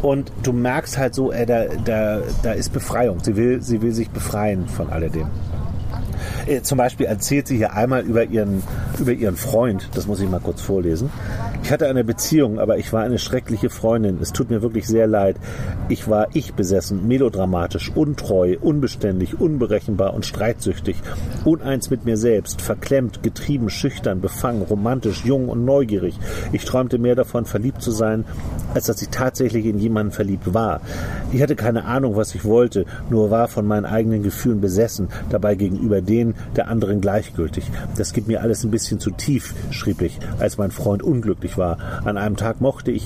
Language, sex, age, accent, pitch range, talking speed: German, male, 40-59, German, 100-120 Hz, 180 wpm